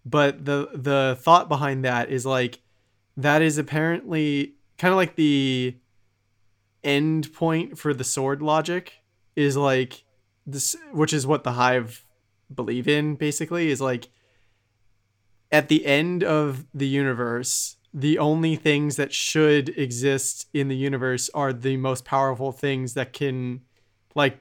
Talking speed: 140 wpm